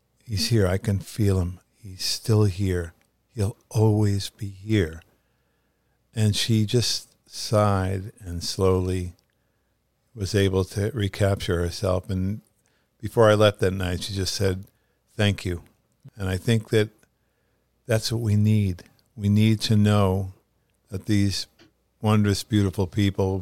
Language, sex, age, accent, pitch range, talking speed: English, male, 50-69, American, 95-105 Hz, 135 wpm